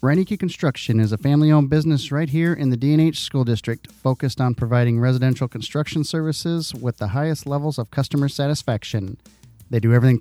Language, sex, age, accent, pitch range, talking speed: English, male, 40-59, American, 115-145 Hz, 175 wpm